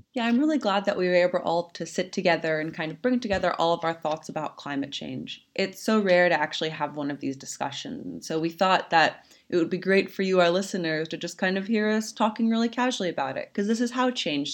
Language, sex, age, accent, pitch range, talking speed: English, female, 20-39, American, 165-220 Hz, 255 wpm